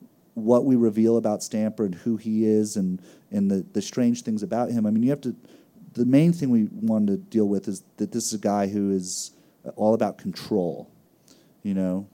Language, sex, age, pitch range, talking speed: English, male, 30-49, 100-125 Hz, 215 wpm